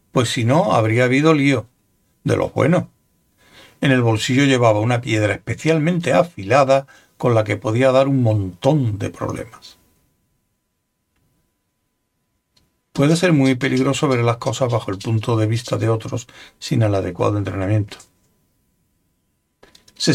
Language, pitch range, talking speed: Spanish, 110-135 Hz, 135 wpm